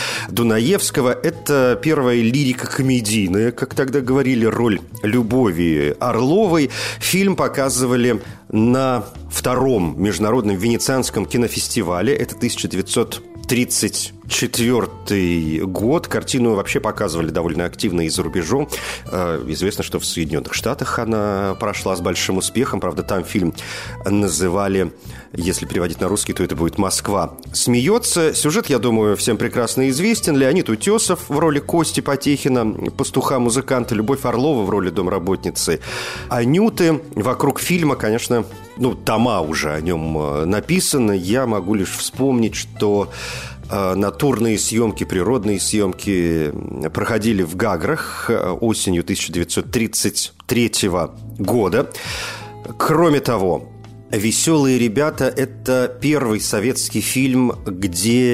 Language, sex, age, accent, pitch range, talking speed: Russian, male, 40-59, native, 95-125 Hz, 110 wpm